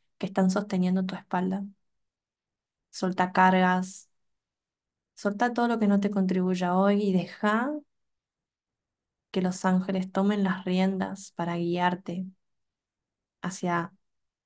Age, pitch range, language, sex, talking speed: 20-39, 185-200 Hz, Spanish, female, 110 wpm